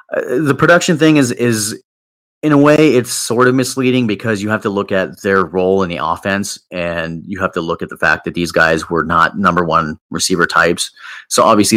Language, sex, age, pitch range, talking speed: English, male, 30-49, 90-110 Hz, 220 wpm